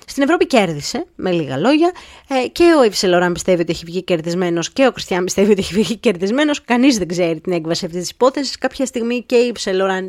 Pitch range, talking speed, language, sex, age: 185-270 Hz, 210 wpm, Greek, female, 20-39